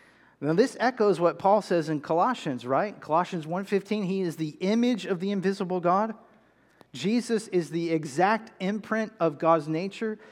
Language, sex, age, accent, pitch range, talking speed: English, male, 40-59, American, 170-220 Hz, 155 wpm